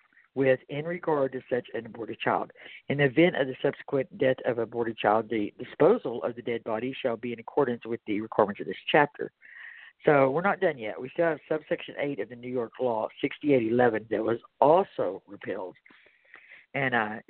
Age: 50-69